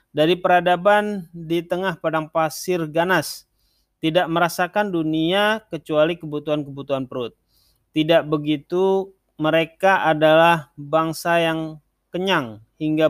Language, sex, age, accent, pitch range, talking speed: Indonesian, male, 30-49, native, 145-175 Hz, 95 wpm